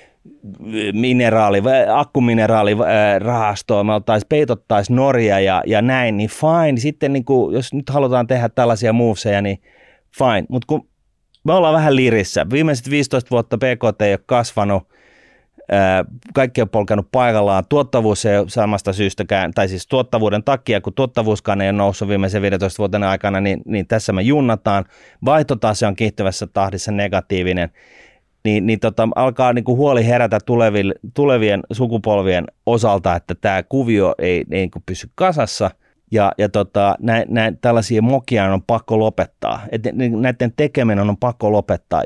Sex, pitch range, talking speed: male, 100-125 Hz, 150 wpm